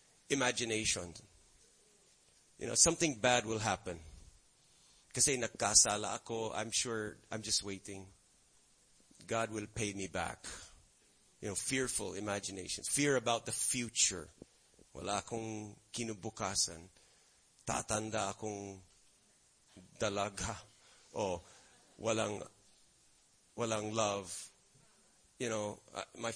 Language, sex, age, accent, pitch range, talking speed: English, male, 30-49, Filipino, 105-130 Hz, 90 wpm